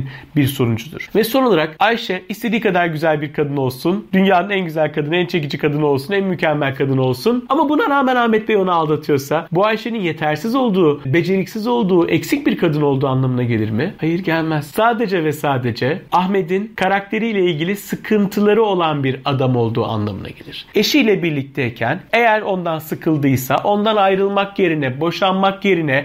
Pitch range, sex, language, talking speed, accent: 145-215 Hz, male, Turkish, 160 wpm, native